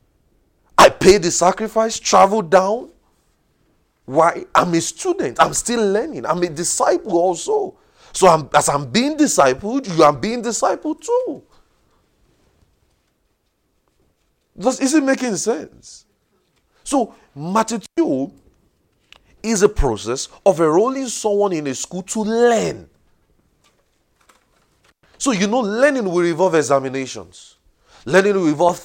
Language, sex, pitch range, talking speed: English, male, 155-225 Hz, 115 wpm